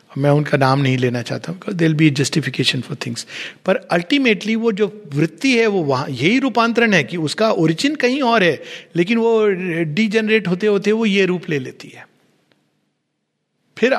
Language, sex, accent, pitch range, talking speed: Hindi, male, native, 140-170 Hz, 175 wpm